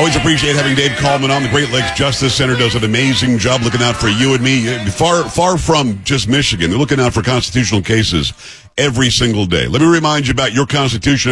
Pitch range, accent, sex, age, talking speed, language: 110-140 Hz, American, male, 50-69, 225 wpm, English